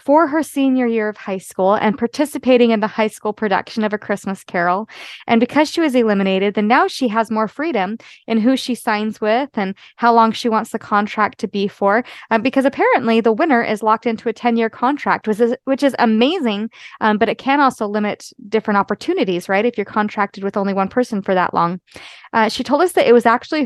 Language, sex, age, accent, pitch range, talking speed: English, female, 20-39, American, 200-245 Hz, 220 wpm